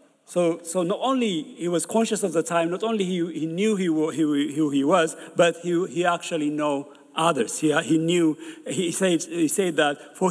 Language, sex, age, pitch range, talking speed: English, male, 50-69, 180-240 Hz, 205 wpm